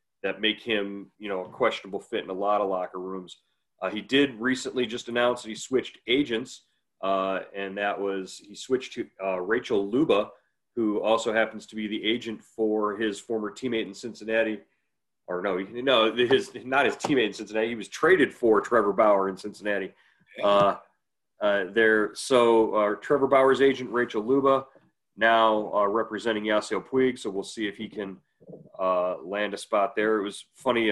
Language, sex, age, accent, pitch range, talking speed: English, male, 40-59, American, 100-120 Hz, 185 wpm